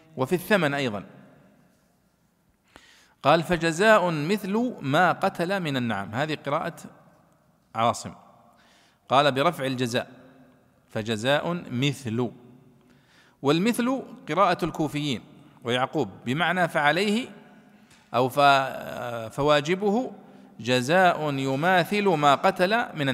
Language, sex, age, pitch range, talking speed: Arabic, male, 50-69, 130-205 Hz, 80 wpm